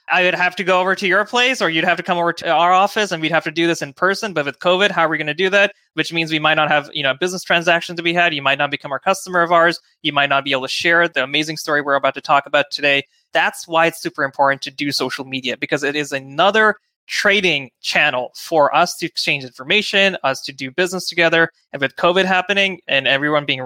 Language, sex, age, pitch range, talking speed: English, male, 20-39, 140-175 Hz, 265 wpm